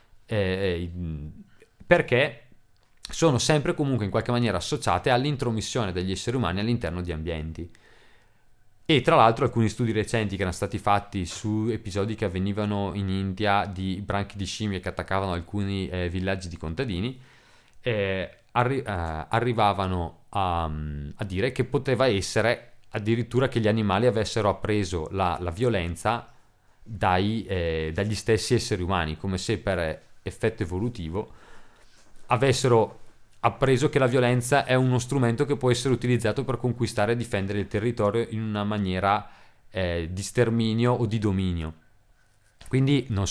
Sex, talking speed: male, 140 wpm